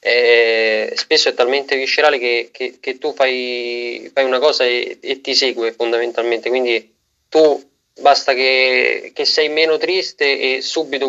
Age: 20-39